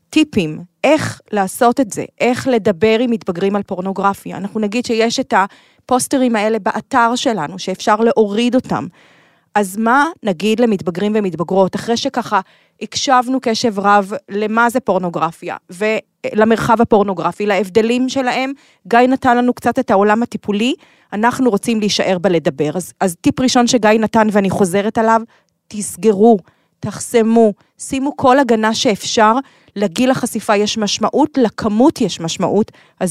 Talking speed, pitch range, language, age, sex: 130 wpm, 190-240 Hz, Hebrew, 30-49, female